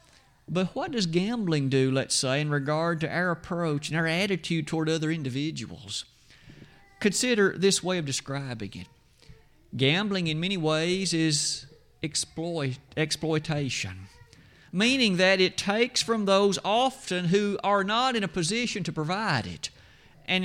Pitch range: 140-185 Hz